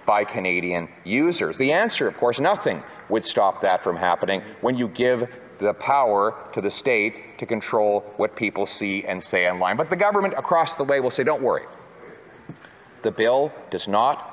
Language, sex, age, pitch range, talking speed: English, male, 40-59, 115-155 Hz, 180 wpm